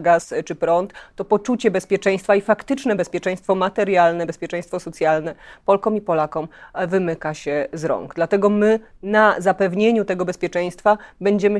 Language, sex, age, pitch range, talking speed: Polish, female, 30-49, 170-210 Hz, 135 wpm